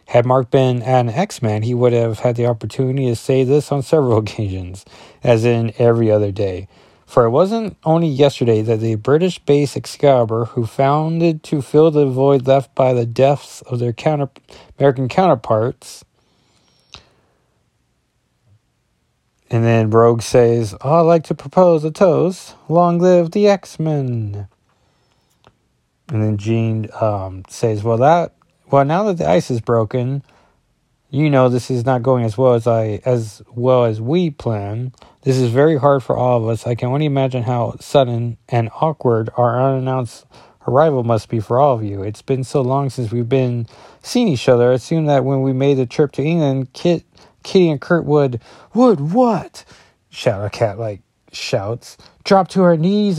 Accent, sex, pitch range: American, male, 115-160 Hz